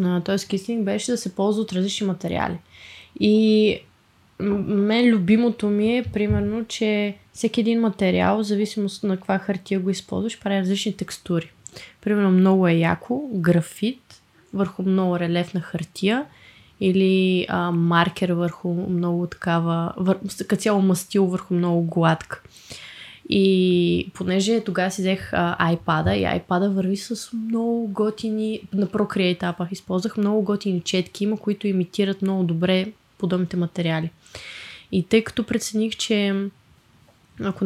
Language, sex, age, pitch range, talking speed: Bulgarian, female, 20-39, 180-205 Hz, 130 wpm